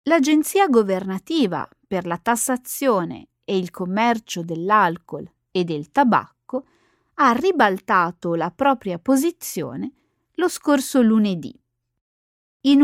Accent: native